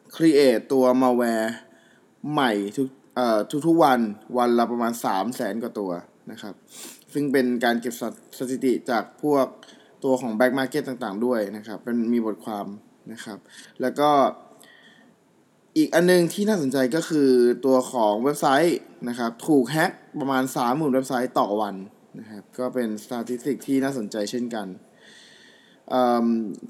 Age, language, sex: 20-39, Thai, male